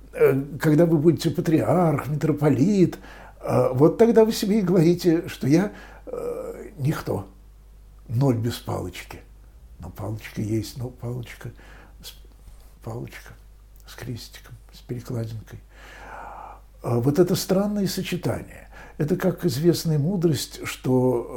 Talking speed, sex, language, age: 105 wpm, male, Russian, 60-79